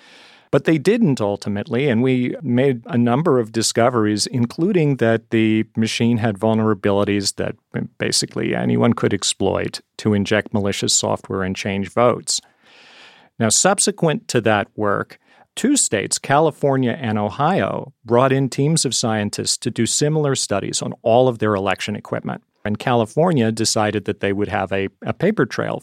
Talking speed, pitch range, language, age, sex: 150 wpm, 105-135 Hz, English, 40-59, male